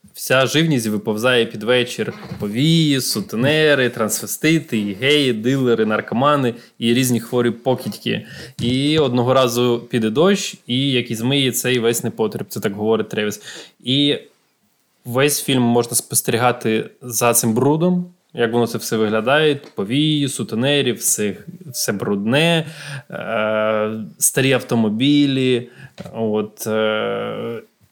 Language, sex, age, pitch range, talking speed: Ukrainian, male, 20-39, 120-150 Hz, 110 wpm